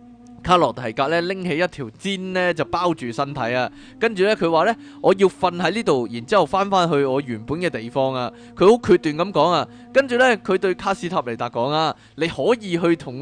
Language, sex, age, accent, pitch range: Chinese, male, 20-39, native, 130-195 Hz